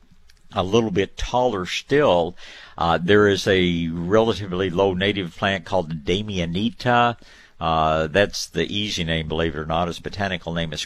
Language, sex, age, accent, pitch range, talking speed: English, male, 60-79, American, 85-100 Hz, 155 wpm